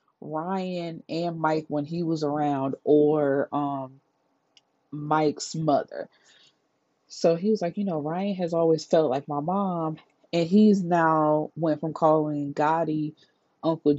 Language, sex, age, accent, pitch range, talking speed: English, female, 20-39, American, 150-180 Hz, 135 wpm